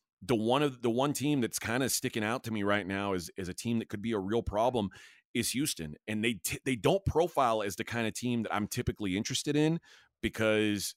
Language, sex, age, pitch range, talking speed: English, male, 30-49, 95-120 Hz, 240 wpm